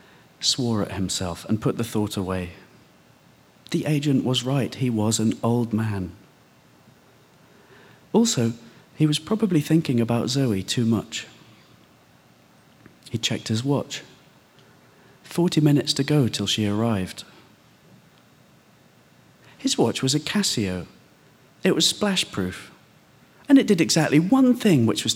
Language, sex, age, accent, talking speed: English, male, 40-59, British, 125 wpm